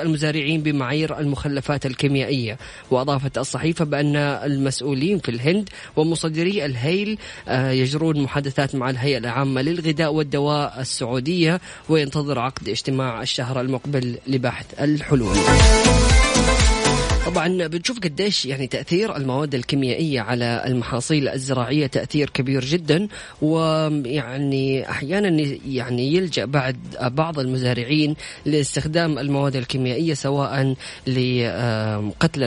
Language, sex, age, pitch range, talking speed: Arabic, female, 20-39, 130-155 Hz, 100 wpm